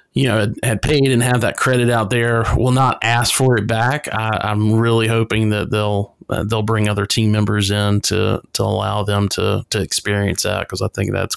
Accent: American